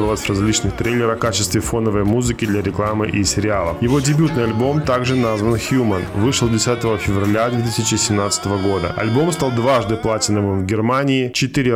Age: 20-39